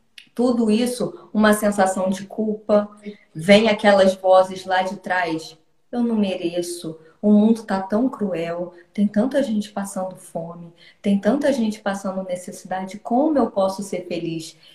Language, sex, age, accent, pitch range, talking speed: Portuguese, female, 20-39, Brazilian, 185-235 Hz, 140 wpm